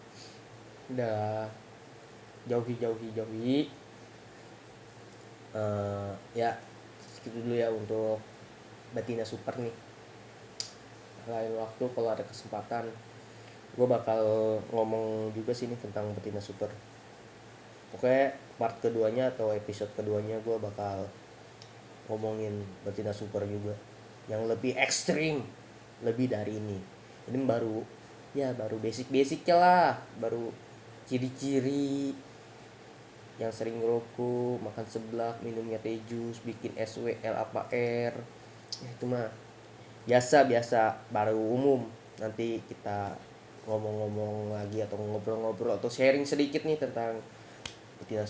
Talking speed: 105 wpm